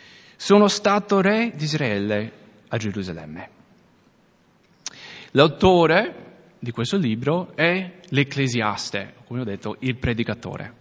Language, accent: English, Italian